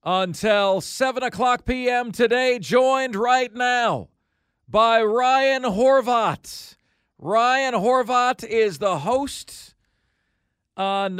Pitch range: 170-230 Hz